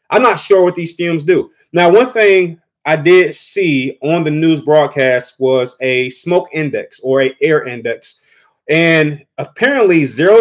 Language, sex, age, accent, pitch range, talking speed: English, male, 30-49, American, 140-190 Hz, 160 wpm